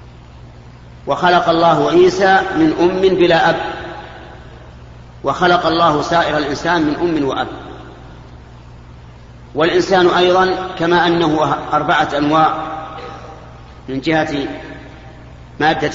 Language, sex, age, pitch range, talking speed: Arabic, male, 40-59, 145-170 Hz, 85 wpm